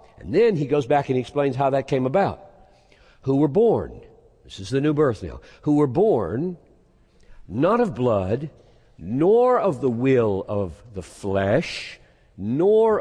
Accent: American